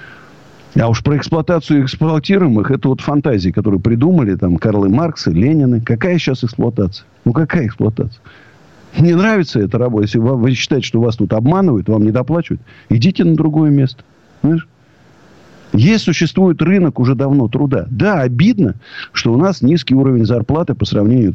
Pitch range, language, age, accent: 110-160 Hz, Russian, 50-69, native